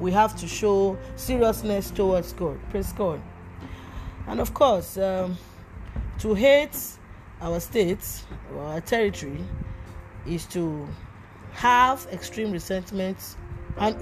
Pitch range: 150-220 Hz